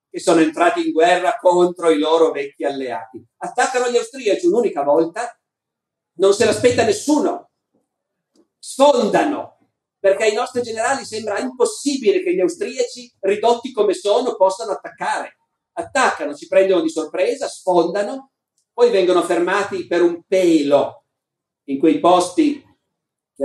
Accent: native